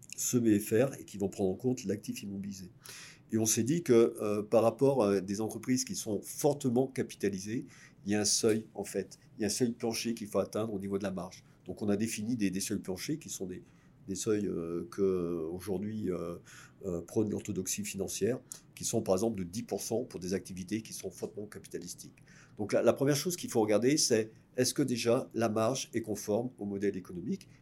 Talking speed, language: 215 wpm, French